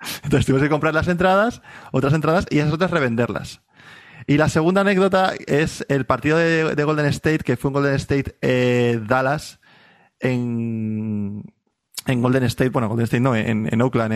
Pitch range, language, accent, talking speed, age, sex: 125-155 Hz, Spanish, Spanish, 175 wpm, 20-39, male